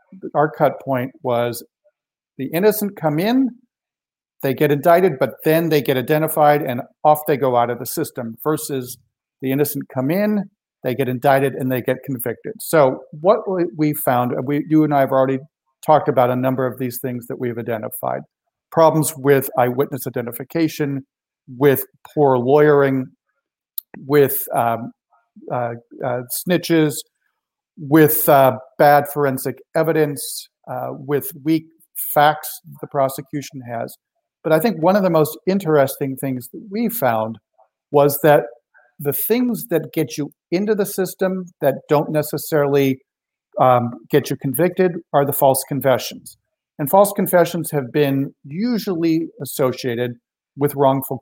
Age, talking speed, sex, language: 50-69, 145 wpm, male, English